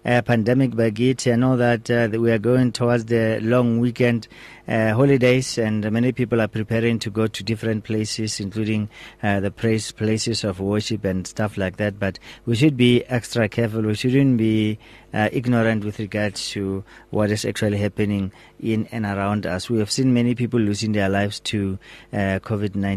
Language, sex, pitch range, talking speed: English, male, 100-120 Hz, 185 wpm